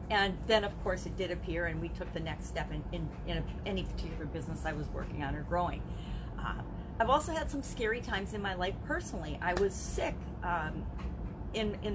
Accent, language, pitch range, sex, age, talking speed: American, English, 165-210 Hz, female, 40-59, 210 wpm